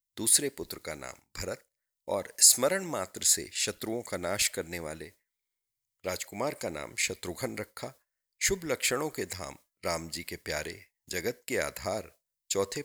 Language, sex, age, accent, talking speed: Hindi, male, 50-69, native, 145 wpm